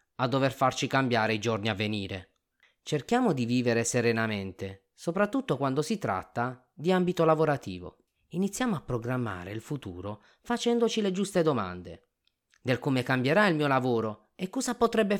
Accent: native